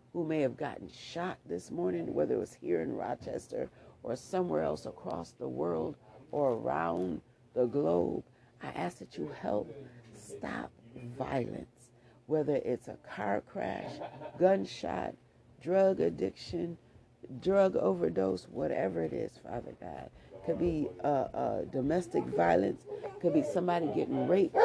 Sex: female